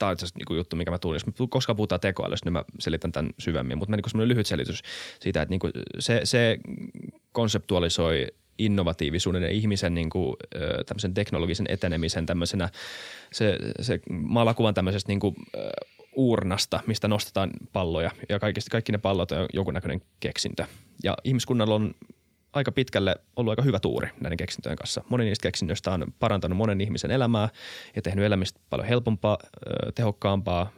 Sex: male